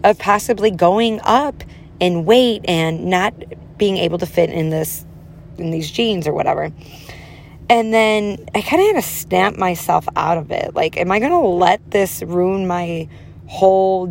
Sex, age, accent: female, 20-39, American